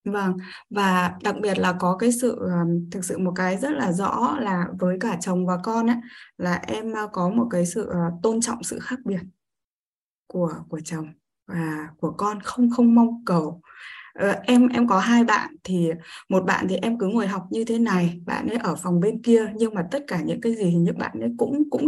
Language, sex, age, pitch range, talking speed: Vietnamese, female, 20-39, 180-245 Hz, 215 wpm